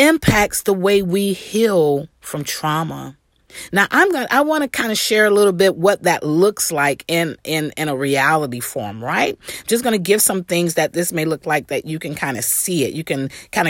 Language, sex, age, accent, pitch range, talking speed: English, female, 40-59, American, 150-200 Hz, 220 wpm